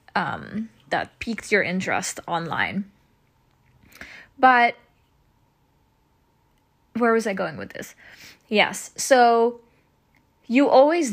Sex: female